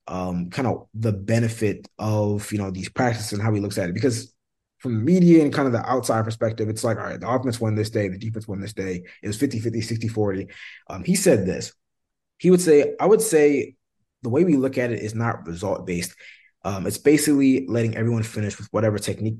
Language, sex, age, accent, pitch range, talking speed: English, male, 20-39, American, 100-120 Hz, 220 wpm